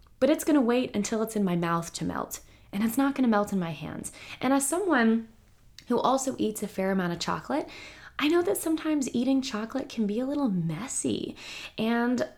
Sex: female